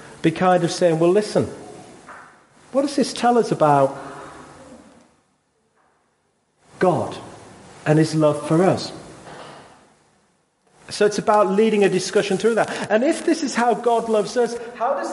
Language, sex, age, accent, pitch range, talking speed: English, male, 40-59, British, 160-205 Hz, 145 wpm